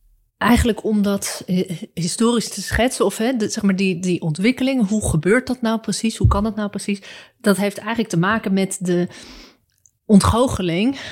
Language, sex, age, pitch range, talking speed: Dutch, female, 30-49, 170-200 Hz, 150 wpm